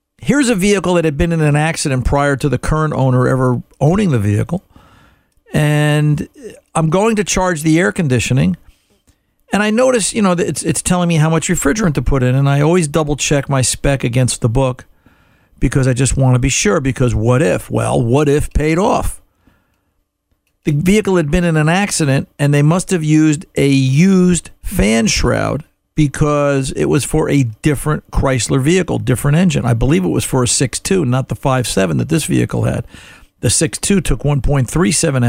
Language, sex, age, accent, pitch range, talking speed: English, male, 50-69, American, 125-165 Hz, 185 wpm